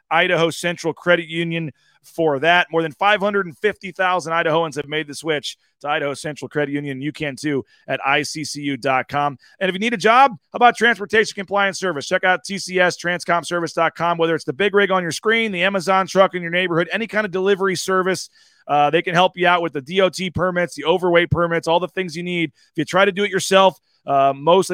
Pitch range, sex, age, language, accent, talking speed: 155-190 Hz, male, 30-49, English, American, 210 wpm